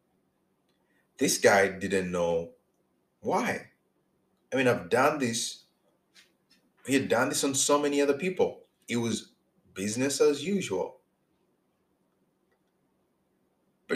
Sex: male